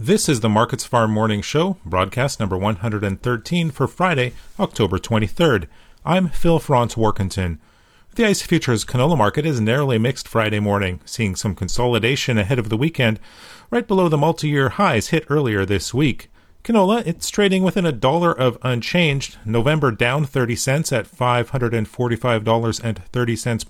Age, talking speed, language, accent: 40-59, 145 wpm, English, American